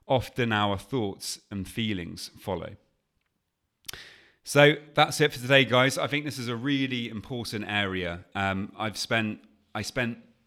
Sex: male